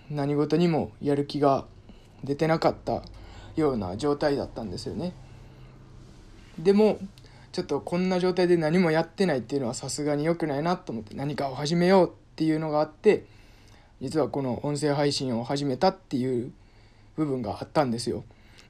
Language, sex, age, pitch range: Japanese, male, 20-39, 115-160 Hz